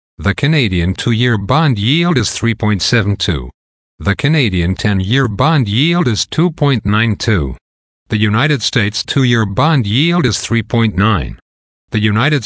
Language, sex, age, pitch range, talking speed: English, male, 50-69, 95-125 Hz, 115 wpm